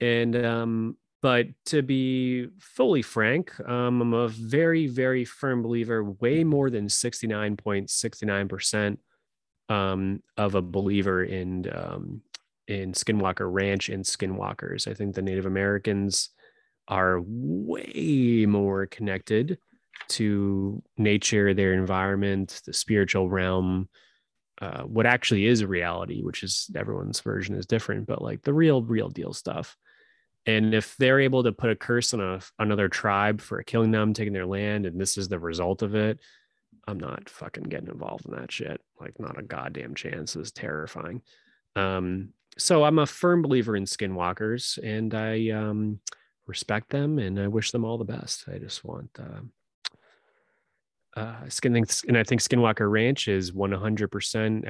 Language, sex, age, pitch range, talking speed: English, male, 20-39, 95-120 Hz, 150 wpm